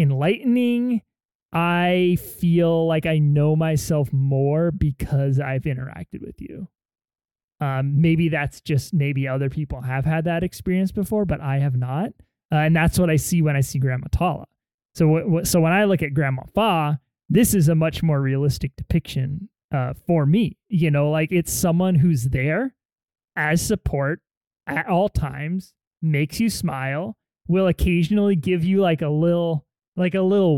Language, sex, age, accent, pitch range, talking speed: English, male, 30-49, American, 150-190 Hz, 165 wpm